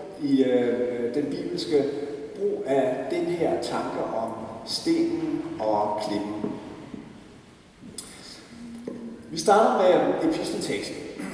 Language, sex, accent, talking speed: Danish, male, native, 90 wpm